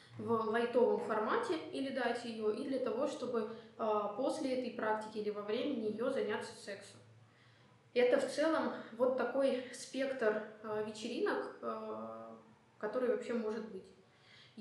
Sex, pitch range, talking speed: female, 210-250 Hz, 125 wpm